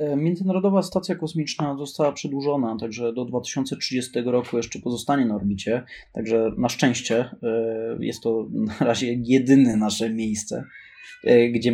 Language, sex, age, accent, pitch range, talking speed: Polish, male, 20-39, native, 115-140 Hz, 125 wpm